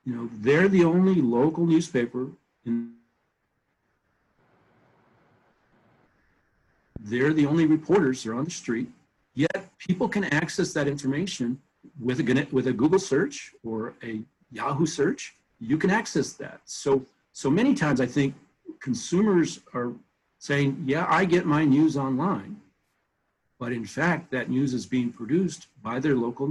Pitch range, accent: 125-160 Hz, American